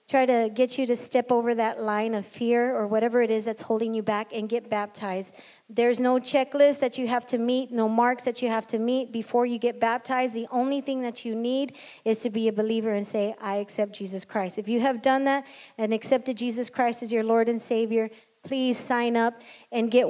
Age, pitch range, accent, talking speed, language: 30-49, 225-255 Hz, American, 230 wpm, English